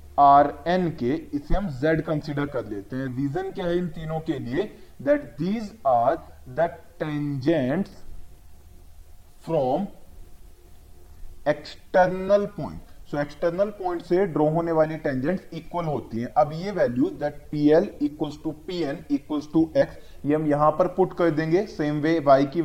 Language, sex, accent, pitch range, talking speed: Hindi, male, native, 145-185 Hz, 155 wpm